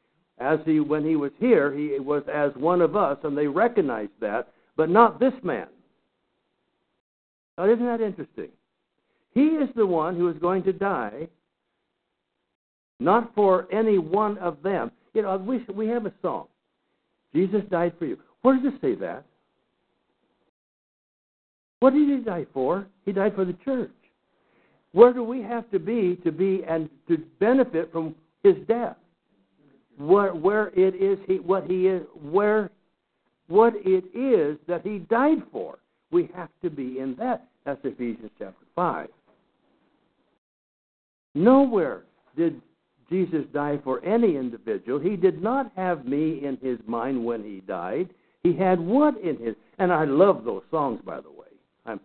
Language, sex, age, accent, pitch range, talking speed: English, male, 60-79, American, 155-225 Hz, 160 wpm